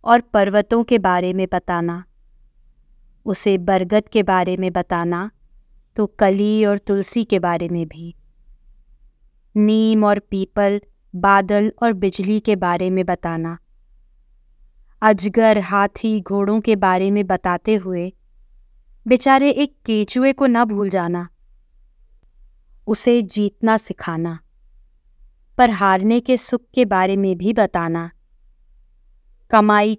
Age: 20-39